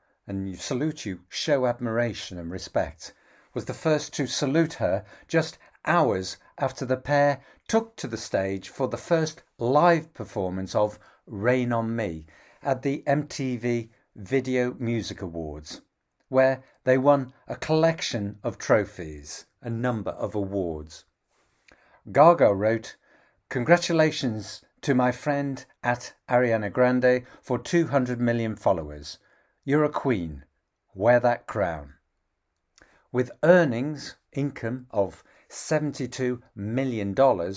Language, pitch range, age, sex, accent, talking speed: English, 100-140 Hz, 50-69, male, British, 120 wpm